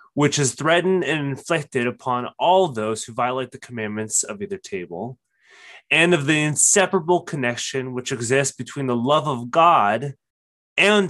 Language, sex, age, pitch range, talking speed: English, male, 20-39, 120-165 Hz, 150 wpm